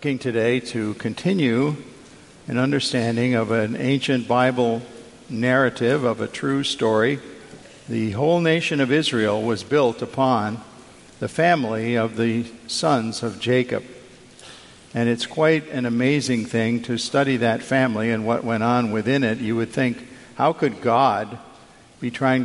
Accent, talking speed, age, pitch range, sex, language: American, 140 wpm, 50-69, 115-135 Hz, male, English